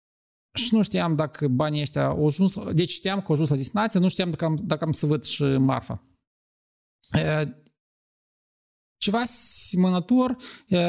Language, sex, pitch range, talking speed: Romanian, male, 155-190 Hz, 150 wpm